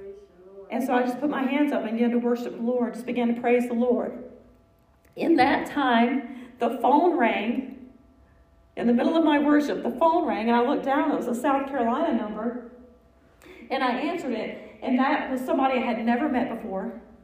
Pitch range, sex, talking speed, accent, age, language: 235-285 Hz, female, 200 wpm, American, 40-59, English